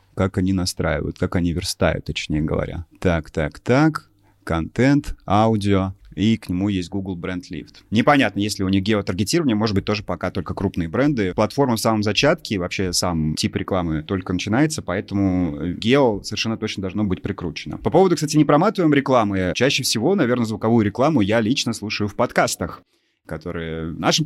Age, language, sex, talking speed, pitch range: 30-49, Russian, male, 165 wpm, 95-125 Hz